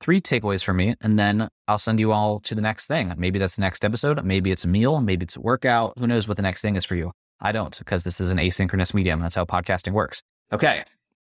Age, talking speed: 20-39, 260 wpm